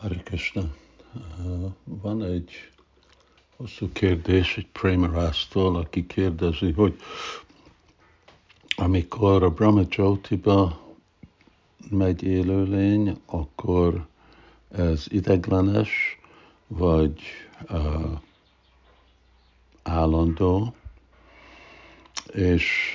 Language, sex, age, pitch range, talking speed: Hungarian, male, 60-79, 80-95 Hz, 60 wpm